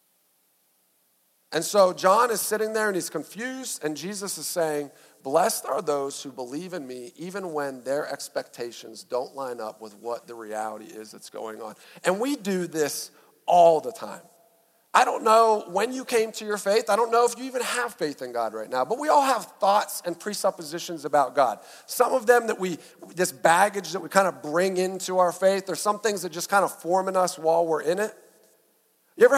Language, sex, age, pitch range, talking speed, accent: English, male, 40-59, 155-225 Hz, 210 wpm, American